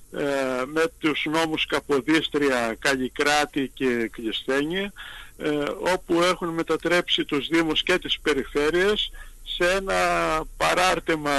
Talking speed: 95 wpm